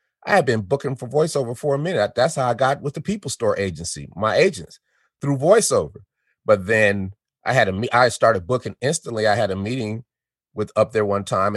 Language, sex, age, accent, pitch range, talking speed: English, male, 30-49, American, 100-125 Hz, 215 wpm